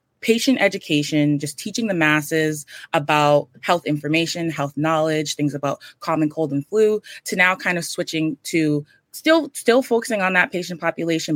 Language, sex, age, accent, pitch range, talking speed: English, female, 20-39, American, 150-185 Hz, 160 wpm